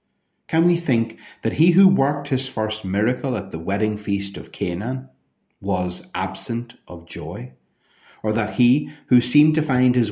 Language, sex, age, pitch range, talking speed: English, male, 30-49, 95-125 Hz, 165 wpm